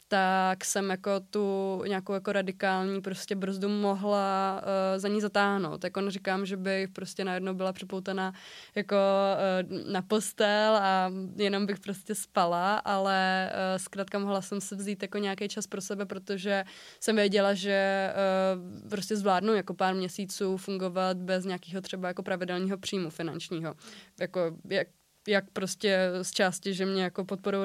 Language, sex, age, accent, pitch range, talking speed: Czech, female, 20-39, native, 190-205 Hz, 150 wpm